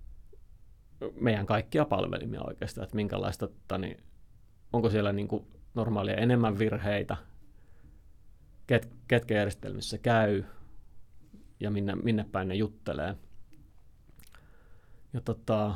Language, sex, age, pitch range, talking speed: Finnish, male, 30-49, 100-115 Hz, 100 wpm